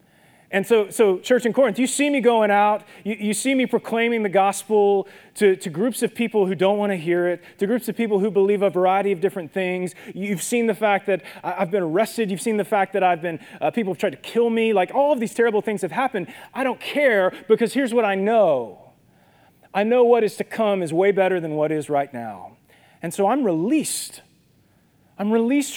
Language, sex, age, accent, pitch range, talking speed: English, male, 30-49, American, 185-230 Hz, 230 wpm